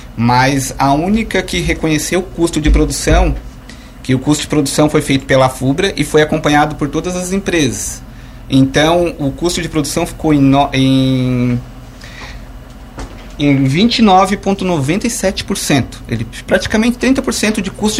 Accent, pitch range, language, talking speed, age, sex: Brazilian, 135-180 Hz, Portuguese, 125 wpm, 30-49, male